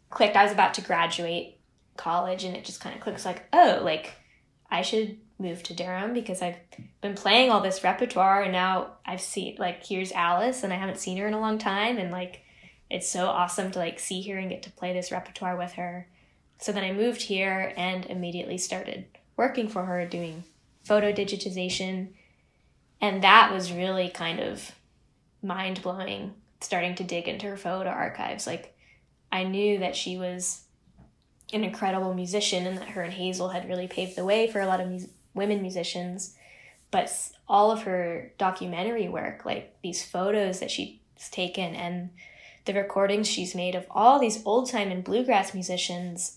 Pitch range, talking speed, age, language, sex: 180-205 Hz, 180 wpm, 10-29, English, female